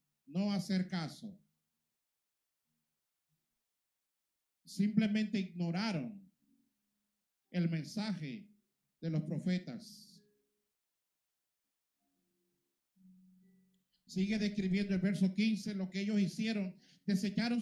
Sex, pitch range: male, 190-240 Hz